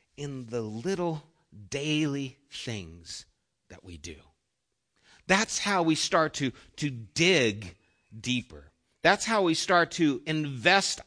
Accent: American